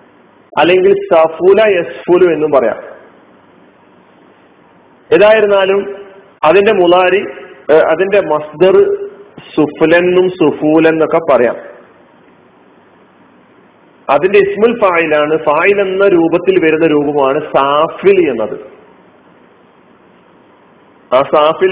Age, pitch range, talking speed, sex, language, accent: 40-59, 150-195 Hz, 70 wpm, male, Malayalam, native